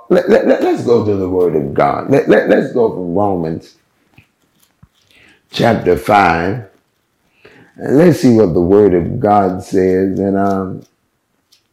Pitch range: 105-135 Hz